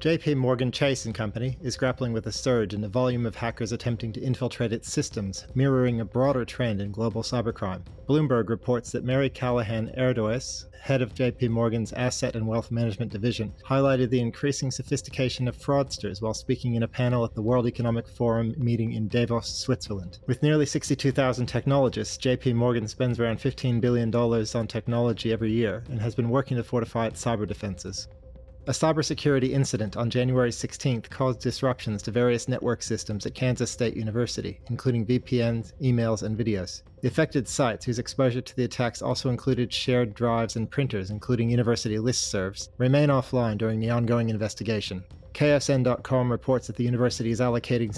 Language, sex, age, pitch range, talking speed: English, male, 30-49, 110-125 Hz, 170 wpm